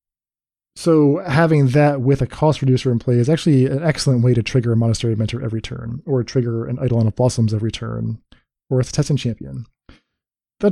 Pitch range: 120-145 Hz